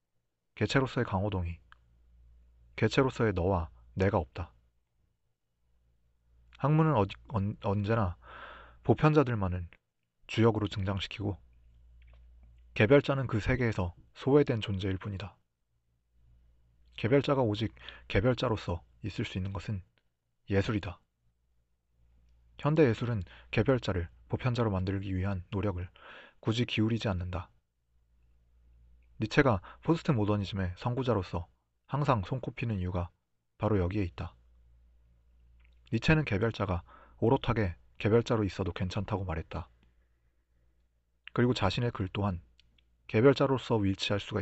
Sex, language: male, Korean